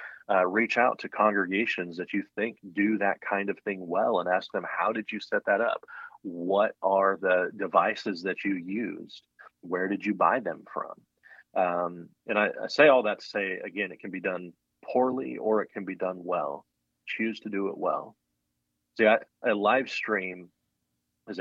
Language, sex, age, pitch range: English, male, 30-49, 85-100 Hz